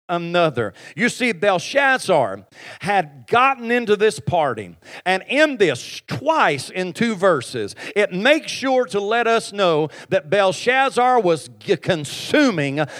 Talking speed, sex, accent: 125 wpm, male, American